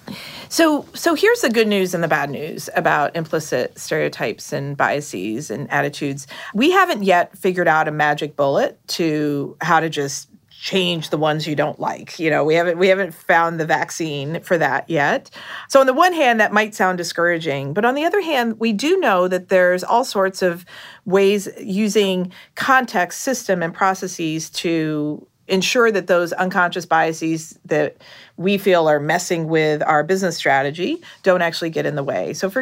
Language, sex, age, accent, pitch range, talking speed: English, female, 40-59, American, 165-205 Hz, 180 wpm